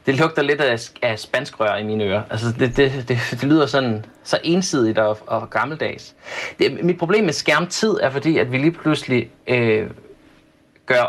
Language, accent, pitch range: Danish, native, 115-145 Hz